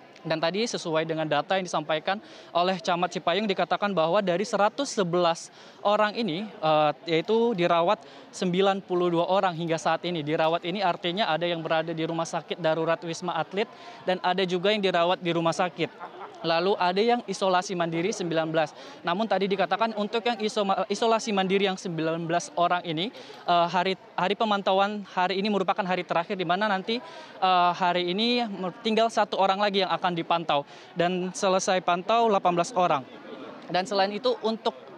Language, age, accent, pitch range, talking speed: Indonesian, 20-39, native, 175-205 Hz, 155 wpm